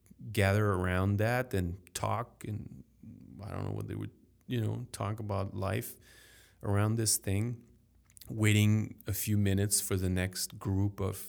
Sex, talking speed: male, 155 wpm